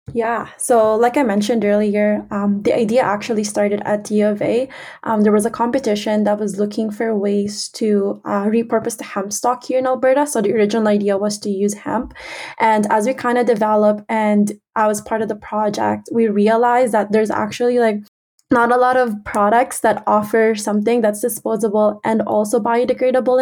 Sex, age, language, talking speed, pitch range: female, 20-39, English, 180 wpm, 210-235 Hz